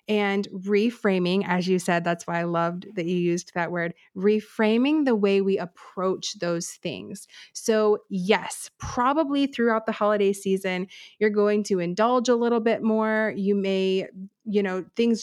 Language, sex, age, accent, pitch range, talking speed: English, female, 30-49, American, 190-220 Hz, 160 wpm